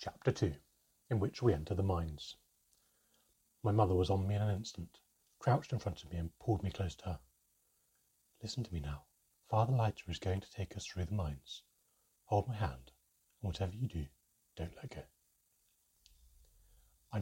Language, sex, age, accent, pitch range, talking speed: English, male, 40-59, British, 85-110 Hz, 180 wpm